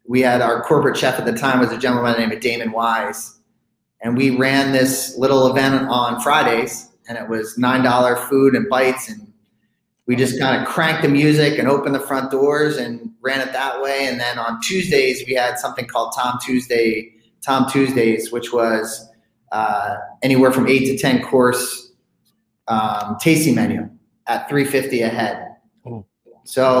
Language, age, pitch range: English, 30-49, 115-135 Hz